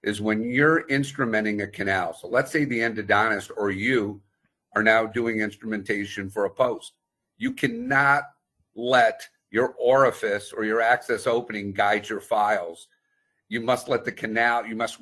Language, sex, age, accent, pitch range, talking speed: English, male, 50-69, American, 105-135 Hz, 155 wpm